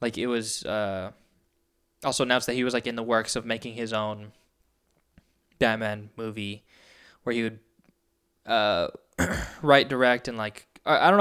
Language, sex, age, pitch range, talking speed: English, male, 10-29, 105-125 Hz, 155 wpm